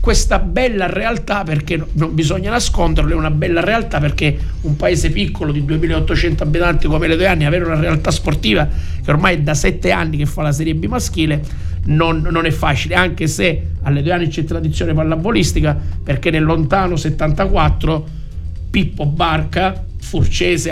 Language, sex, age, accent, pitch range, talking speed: Italian, male, 50-69, native, 140-175 Hz, 165 wpm